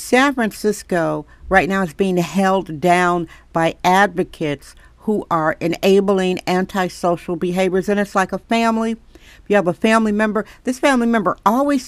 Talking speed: 150 wpm